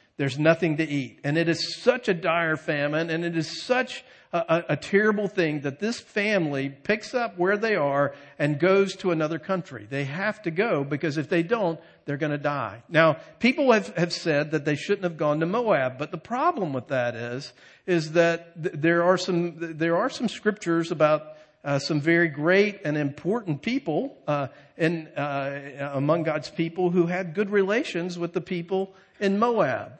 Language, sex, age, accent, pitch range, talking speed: English, male, 50-69, American, 155-195 Hz, 190 wpm